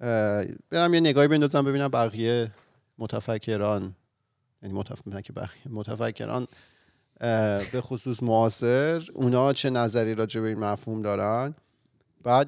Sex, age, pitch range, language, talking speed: male, 30-49, 110-125 Hz, Persian, 100 wpm